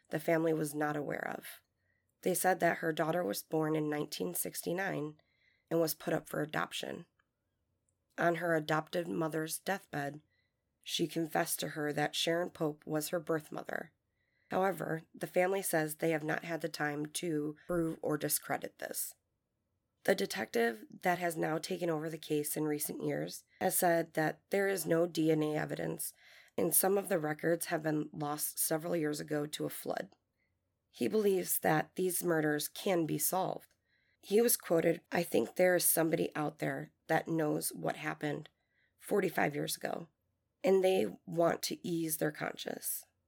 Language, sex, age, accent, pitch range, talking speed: English, female, 20-39, American, 150-175 Hz, 165 wpm